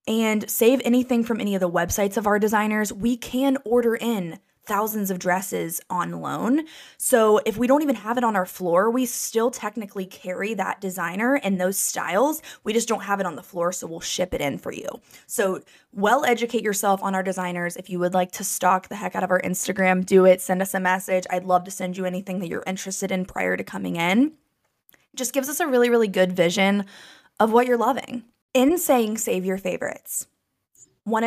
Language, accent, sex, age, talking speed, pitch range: English, American, female, 20-39, 215 wpm, 185-235 Hz